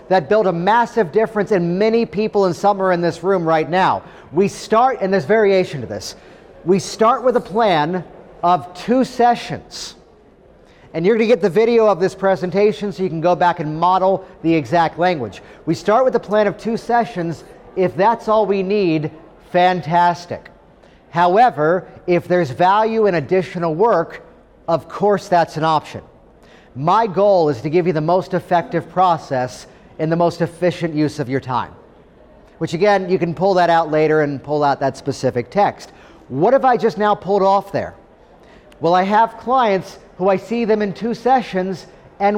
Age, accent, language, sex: 40-59, American, English, male